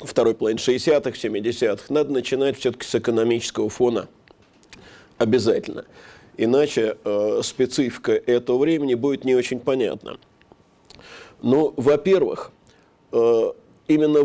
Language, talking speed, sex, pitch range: Russian, 95 wpm, male, 120-180 Hz